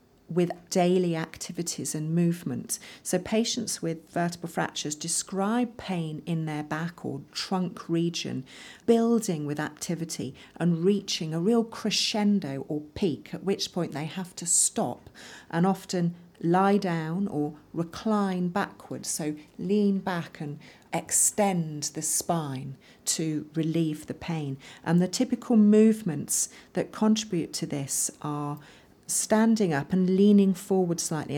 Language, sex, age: English, female, 40-59